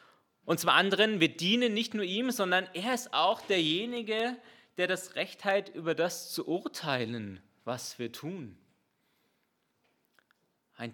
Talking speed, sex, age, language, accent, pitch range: 135 wpm, male, 30-49, German, German, 115-175 Hz